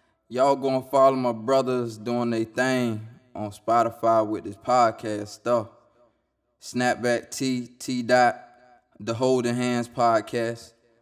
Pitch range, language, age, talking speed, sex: 110-120 Hz, English, 20-39, 120 wpm, male